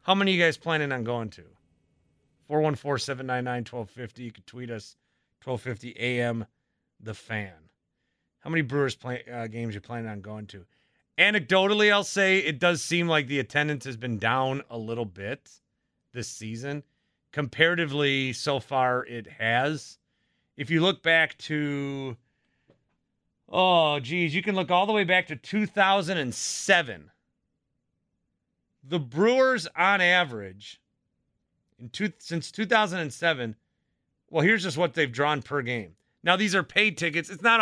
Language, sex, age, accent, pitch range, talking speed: English, male, 30-49, American, 120-180 Hz, 145 wpm